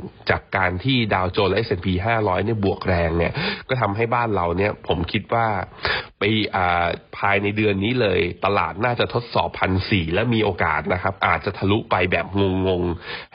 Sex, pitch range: male, 90-115 Hz